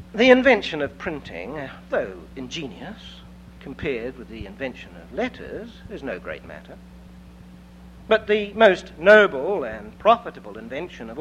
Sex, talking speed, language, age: male, 130 wpm, English, 60-79